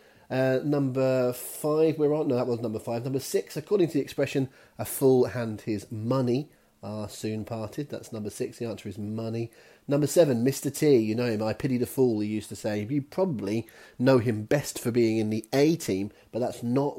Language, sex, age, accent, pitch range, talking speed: English, male, 30-49, British, 105-130 Hz, 210 wpm